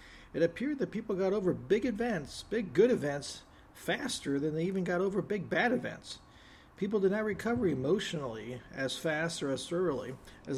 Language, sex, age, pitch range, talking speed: English, male, 50-69, 145-195 Hz, 175 wpm